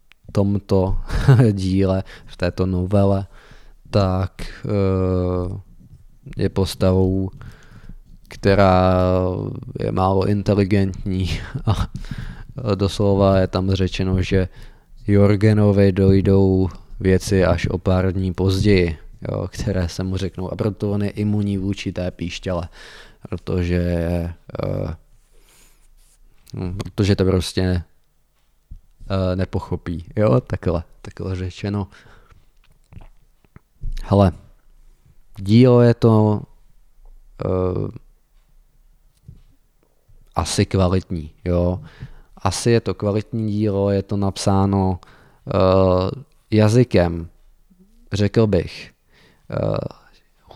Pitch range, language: 90-105 Hz, Czech